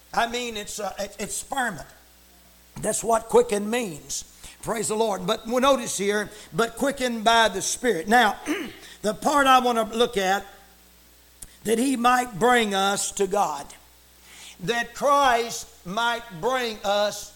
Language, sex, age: English, male, 60-79